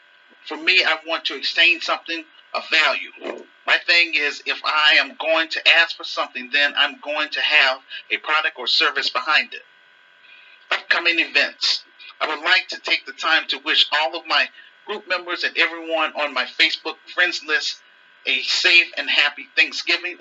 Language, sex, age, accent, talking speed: English, male, 40-59, American, 175 wpm